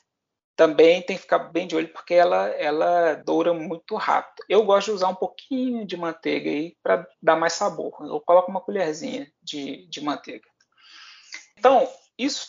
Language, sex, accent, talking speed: Portuguese, male, Brazilian, 170 wpm